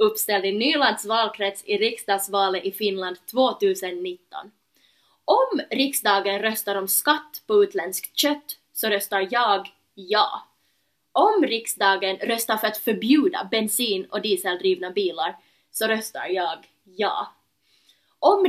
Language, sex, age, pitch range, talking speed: Swedish, female, 20-39, 200-270 Hz, 115 wpm